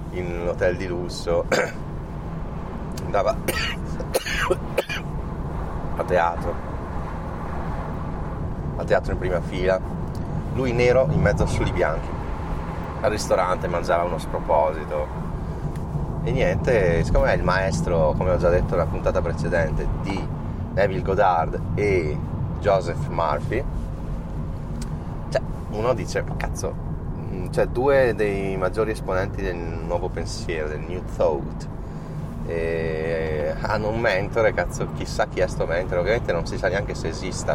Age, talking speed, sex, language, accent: 30-49, 120 wpm, male, Italian, native